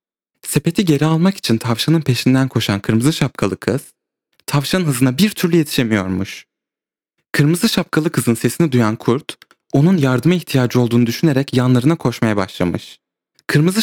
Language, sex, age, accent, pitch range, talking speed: Turkish, male, 30-49, native, 120-165 Hz, 130 wpm